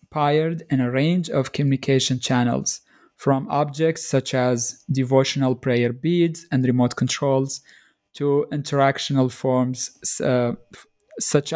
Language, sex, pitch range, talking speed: English, male, 125-140 Hz, 115 wpm